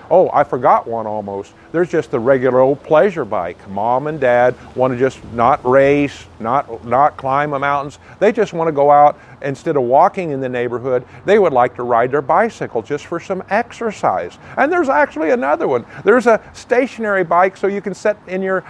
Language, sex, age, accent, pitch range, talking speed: English, male, 50-69, American, 135-210 Hz, 200 wpm